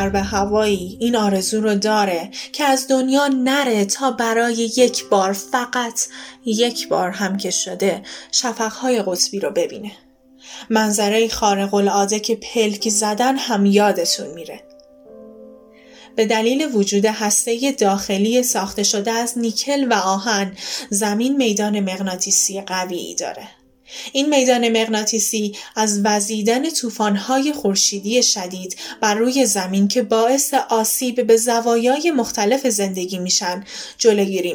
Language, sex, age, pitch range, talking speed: Persian, female, 10-29, 205-260 Hz, 120 wpm